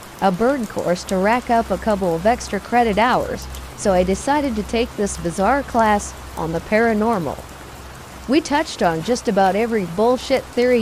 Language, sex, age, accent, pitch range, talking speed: English, female, 50-69, American, 205-260 Hz, 170 wpm